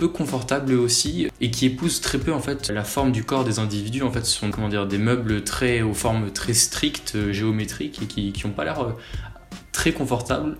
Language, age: French, 20-39